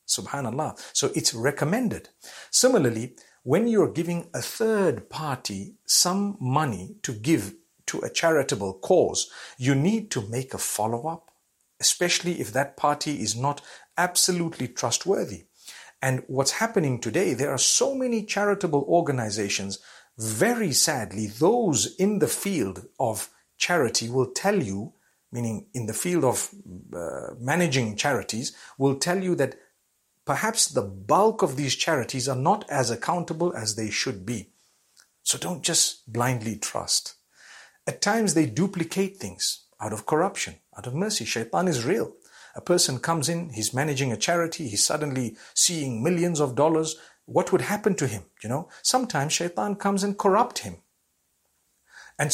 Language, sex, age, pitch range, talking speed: English, male, 50-69, 120-175 Hz, 145 wpm